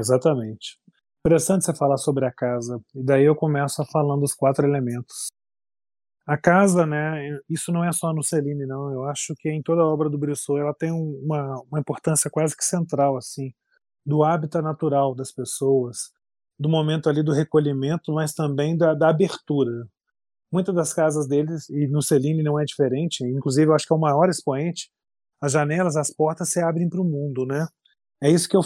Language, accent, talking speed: Portuguese, Brazilian, 190 wpm